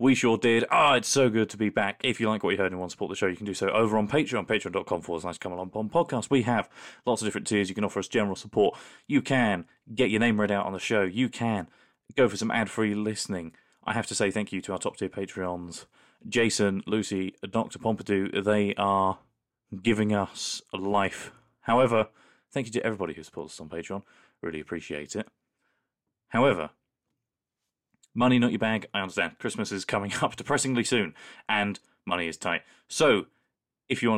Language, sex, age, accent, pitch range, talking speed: English, male, 20-39, British, 95-120 Hz, 210 wpm